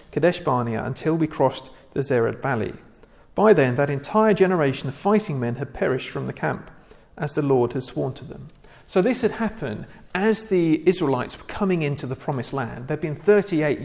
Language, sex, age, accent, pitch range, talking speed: English, male, 40-59, British, 130-175 Hz, 185 wpm